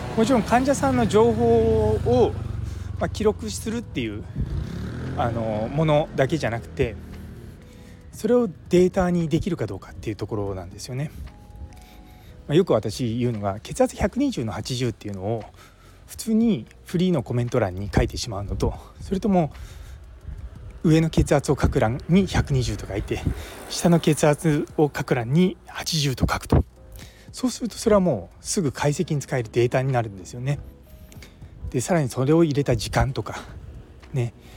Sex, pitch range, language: male, 105-155 Hz, Japanese